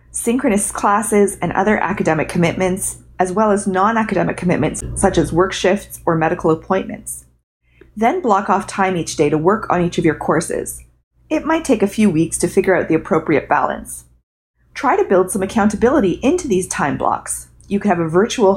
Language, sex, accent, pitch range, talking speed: English, female, American, 160-215 Hz, 185 wpm